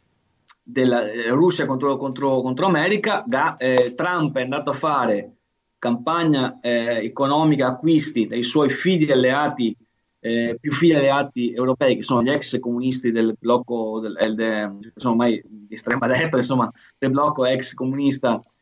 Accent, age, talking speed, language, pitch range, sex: native, 30-49, 155 wpm, Italian, 120-140 Hz, male